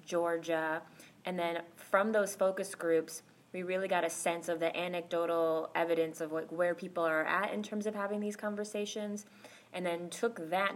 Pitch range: 165-190 Hz